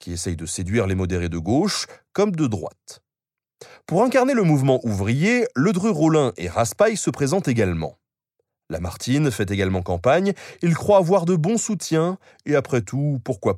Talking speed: 160 wpm